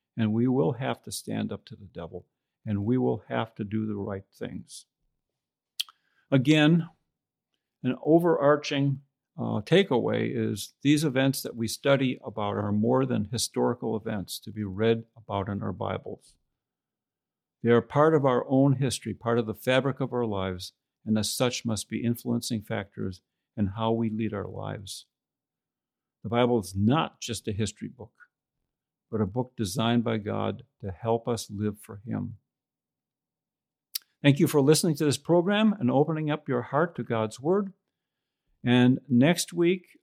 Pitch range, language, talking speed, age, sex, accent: 110-140 Hz, English, 160 wpm, 50-69, male, American